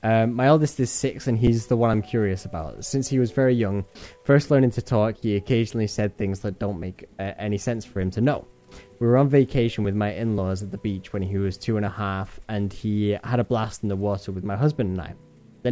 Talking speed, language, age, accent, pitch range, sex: 250 wpm, English, 10-29, British, 100-120 Hz, male